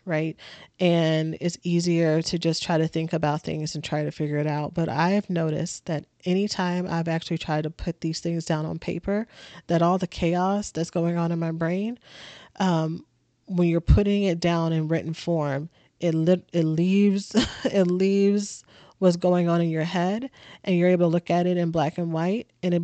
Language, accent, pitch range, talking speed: English, American, 165-185 Hz, 205 wpm